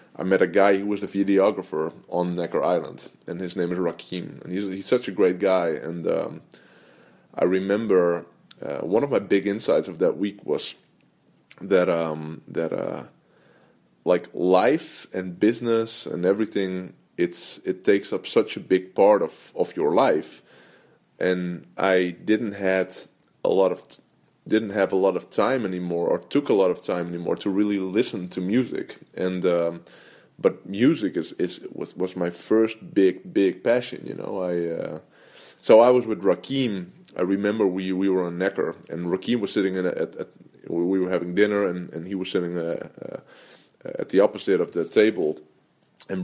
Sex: male